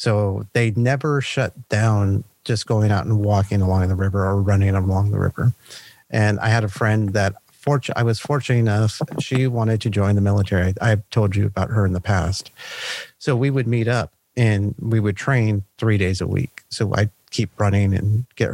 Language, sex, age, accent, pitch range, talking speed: English, male, 40-59, American, 100-120 Hz, 205 wpm